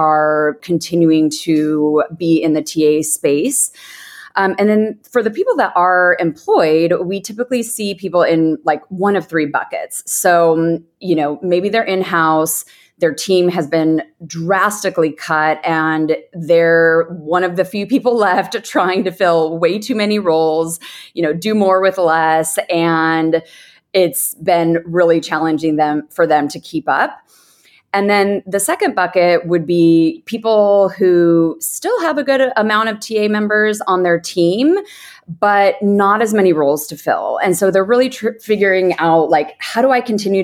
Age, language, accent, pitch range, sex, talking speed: 30-49, English, American, 160-195 Hz, female, 160 wpm